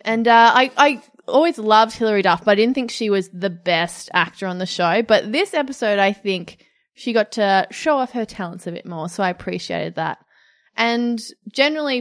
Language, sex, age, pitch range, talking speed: English, female, 20-39, 185-240 Hz, 205 wpm